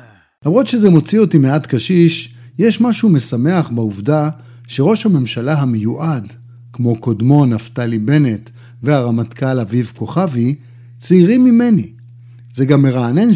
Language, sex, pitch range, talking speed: Hebrew, male, 120-170 Hz, 110 wpm